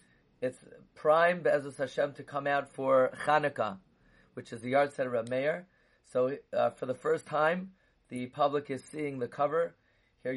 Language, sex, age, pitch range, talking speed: English, male, 30-49, 125-155 Hz, 170 wpm